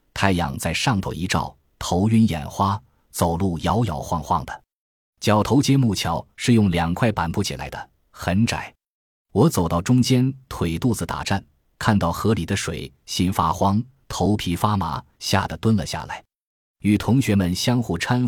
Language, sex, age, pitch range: Chinese, male, 20-39, 85-110 Hz